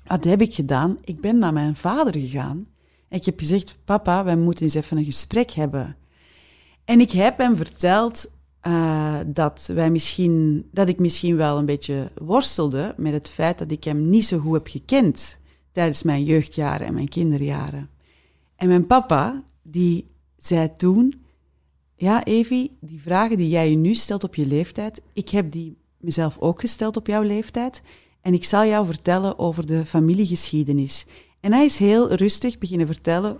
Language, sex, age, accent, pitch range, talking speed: Dutch, female, 30-49, Dutch, 150-200 Hz, 170 wpm